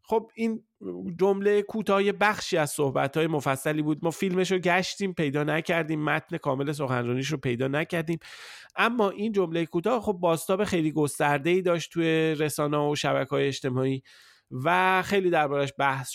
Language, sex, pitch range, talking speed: Persian, male, 135-175 Hz, 150 wpm